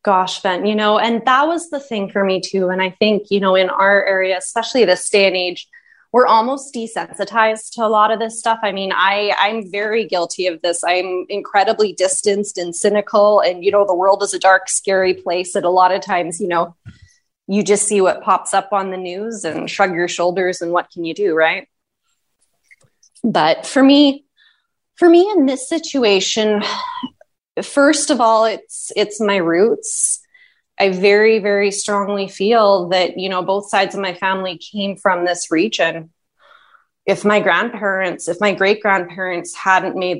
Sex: female